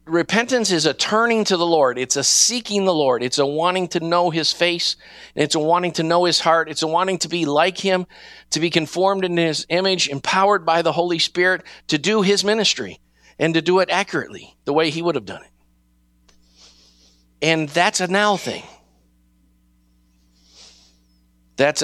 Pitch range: 125-175 Hz